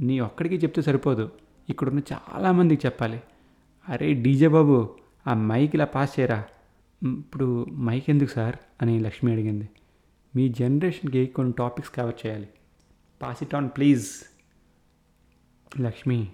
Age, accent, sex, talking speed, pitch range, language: 30-49, native, male, 120 wpm, 115-135 Hz, Telugu